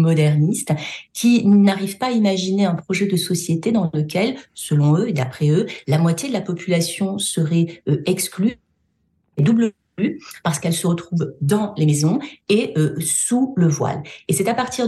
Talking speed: 170 wpm